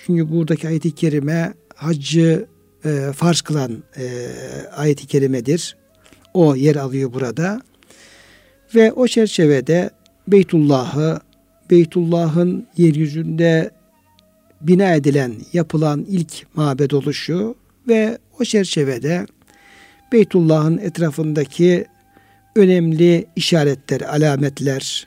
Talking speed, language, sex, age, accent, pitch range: 85 wpm, Turkish, male, 60-79, native, 140-175 Hz